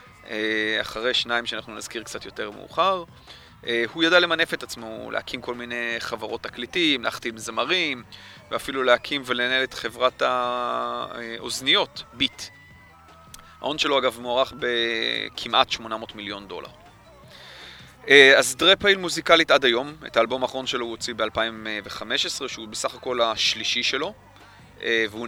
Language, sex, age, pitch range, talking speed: Hebrew, male, 30-49, 110-135 Hz, 125 wpm